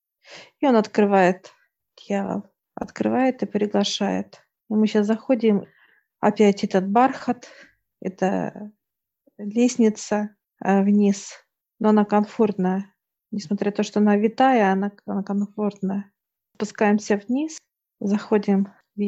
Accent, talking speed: native, 100 wpm